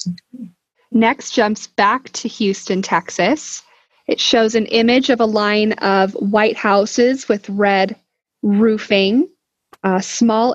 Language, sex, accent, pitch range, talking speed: English, female, American, 200-240 Hz, 120 wpm